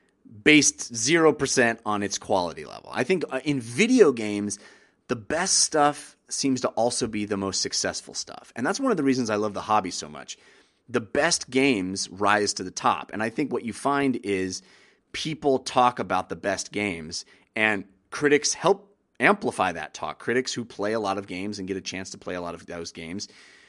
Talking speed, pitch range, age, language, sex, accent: 200 wpm, 95-135 Hz, 30-49, English, male, American